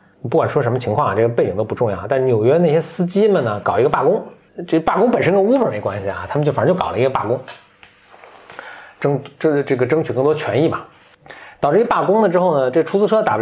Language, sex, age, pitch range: Chinese, male, 20-39, 125-190 Hz